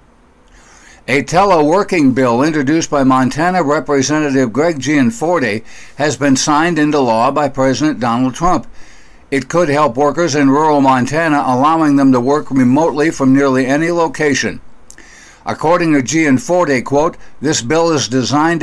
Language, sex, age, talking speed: English, male, 60-79, 135 wpm